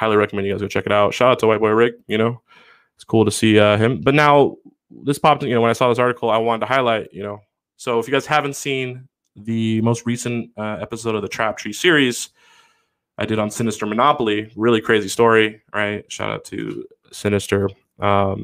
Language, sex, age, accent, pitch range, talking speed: English, male, 20-39, American, 100-120 Hz, 220 wpm